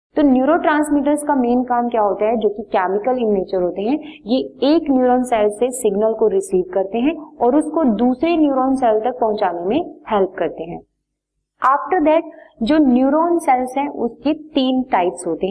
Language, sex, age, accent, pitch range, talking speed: Hindi, female, 30-49, native, 215-295 Hz, 185 wpm